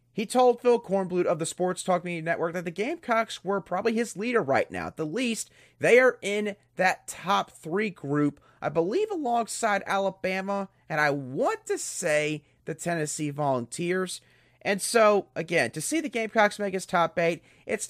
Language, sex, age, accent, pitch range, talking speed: English, male, 30-49, American, 150-205 Hz, 180 wpm